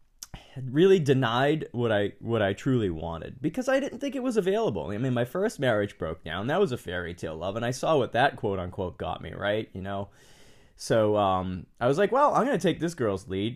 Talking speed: 225 wpm